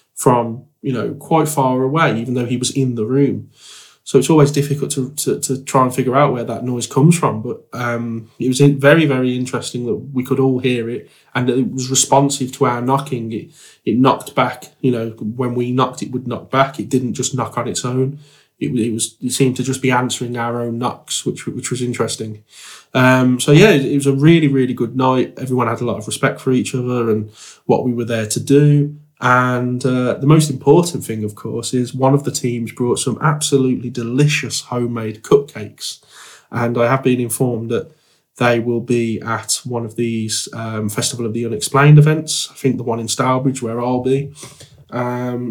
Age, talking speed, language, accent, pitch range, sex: 20-39, 210 wpm, English, British, 115-135 Hz, male